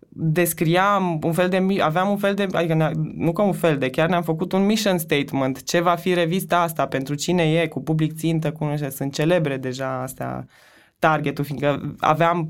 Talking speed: 195 wpm